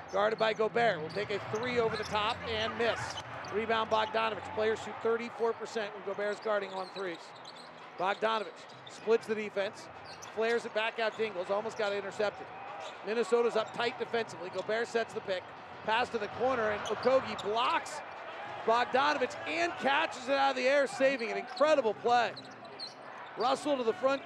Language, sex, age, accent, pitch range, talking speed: English, male, 40-59, American, 220-275 Hz, 160 wpm